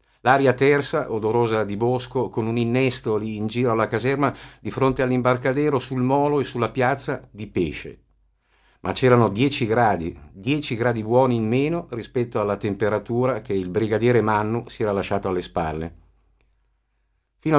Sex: male